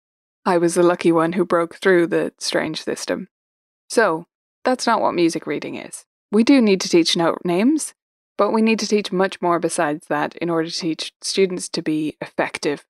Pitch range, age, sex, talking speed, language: 165-215 Hz, 20-39, female, 195 wpm, English